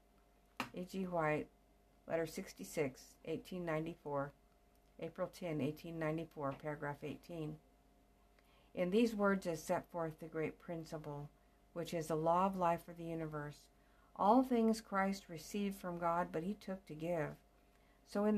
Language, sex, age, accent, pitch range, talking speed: English, female, 50-69, American, 150-185 Hz, 135 wpm